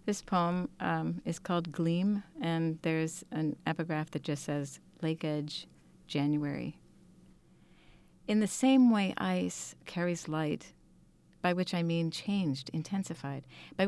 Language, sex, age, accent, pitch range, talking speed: English, female, 40-59, American, 165-190 Hz, 130 wpm